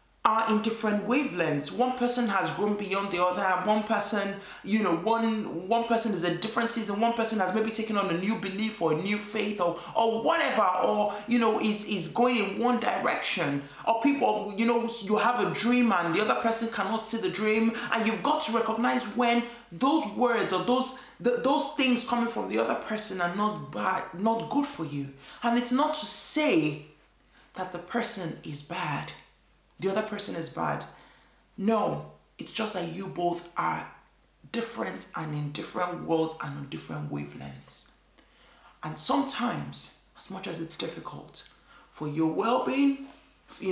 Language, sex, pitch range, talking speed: English, male, 170-230 Hz, 180 wpm